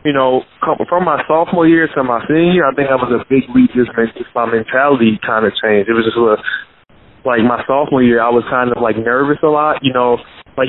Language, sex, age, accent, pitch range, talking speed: English, male, 20-39, American, 125-145 Hz, 235 wpm